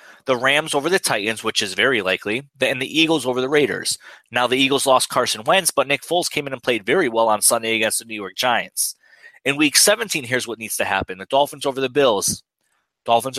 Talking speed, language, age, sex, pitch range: 230 wpm, English, 30-49, male, 110-145 Hz